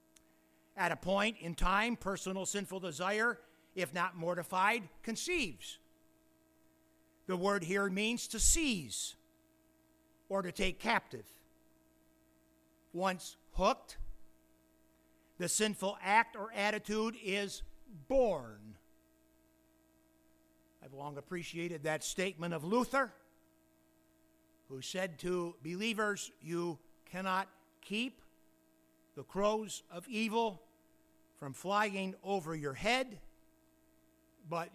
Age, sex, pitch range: 60-79, male, 135-220 Hz